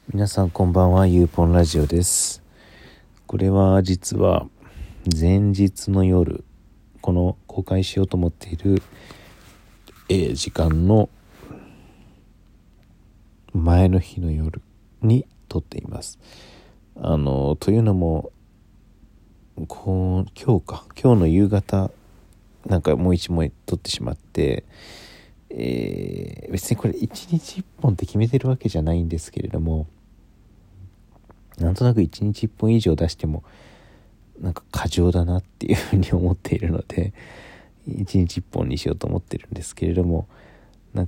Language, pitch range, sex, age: Japanese, 85-105 Hz, male, 40-59